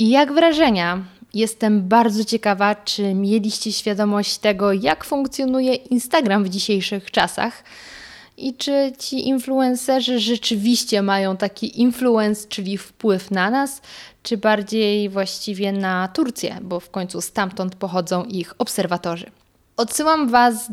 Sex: female